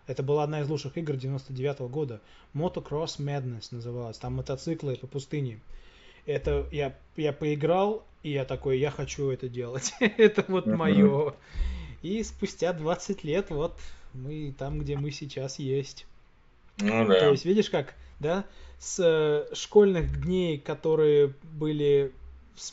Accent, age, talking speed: native, 20-39, 135 wpm